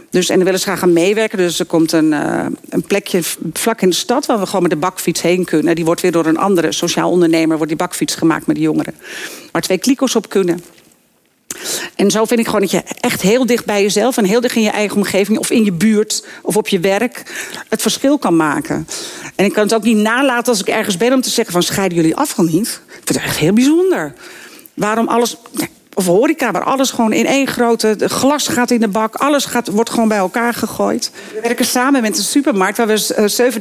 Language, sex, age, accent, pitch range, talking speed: Dutch, female, 50-69, Dutch, 175-240 Hz, 245 wpm